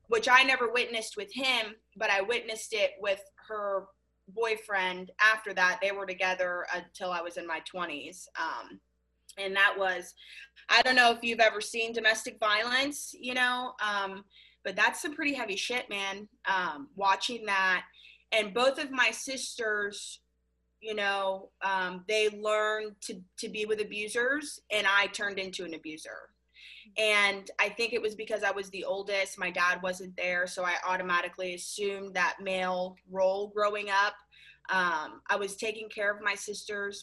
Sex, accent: female, American